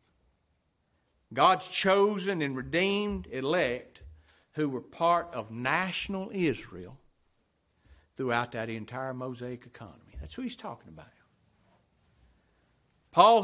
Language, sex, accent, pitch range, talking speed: English, male, American, 115-165 Hz, 100 wpm